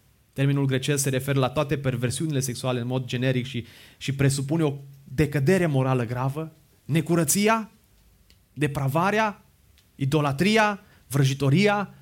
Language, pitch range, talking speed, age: Romanian, 135-180 Hz, 110 wpm, 30-49